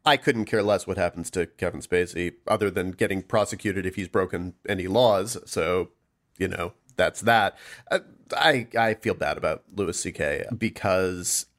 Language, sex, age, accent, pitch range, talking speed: English, male, 40-59, American, 105-125 Hz, 160 wpm